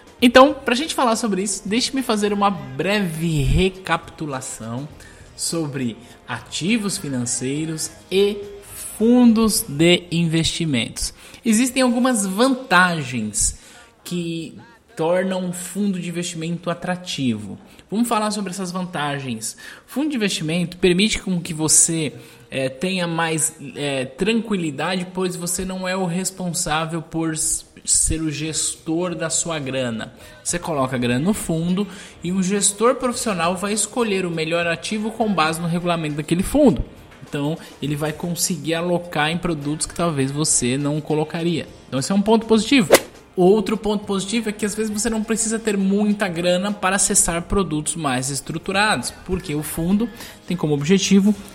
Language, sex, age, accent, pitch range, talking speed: Portuguese, male, 10-29, Brazilian, 155-205 Hz, 140 wpm